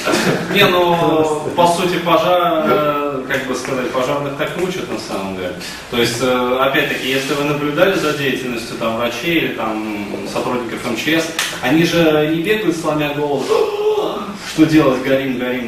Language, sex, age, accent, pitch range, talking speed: Russian, male, 20-39, native, 120-165 Hz, 145 wpm